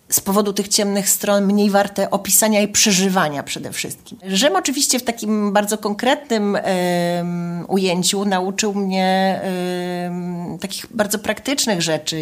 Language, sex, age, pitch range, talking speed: Polish, female, 30-49, 170-200 Hz, 135 wpm